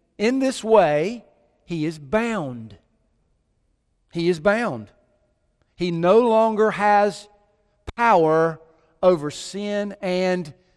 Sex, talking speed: male, 95 wpm